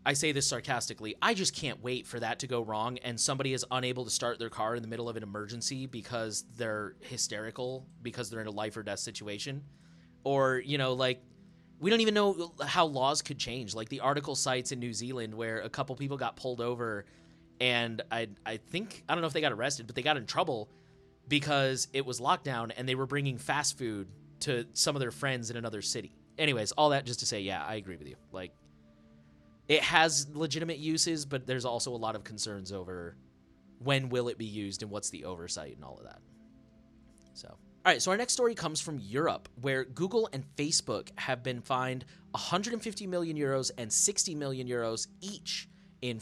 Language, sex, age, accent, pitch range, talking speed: English, male, 20-39, American, 115-150 Hz, 210 wpm